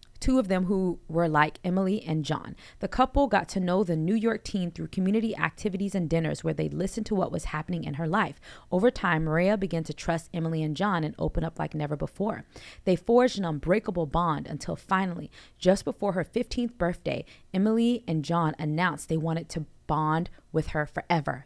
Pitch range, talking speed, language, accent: 155-190 Hz, 200 wpm, English, American